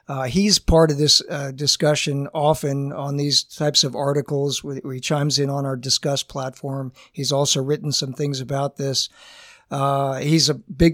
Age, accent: 50-69, American